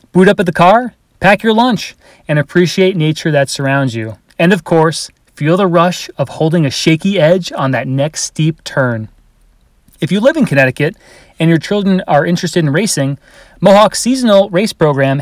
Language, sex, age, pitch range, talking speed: English, male, 30-49, 145-190 Hz, 180 wpm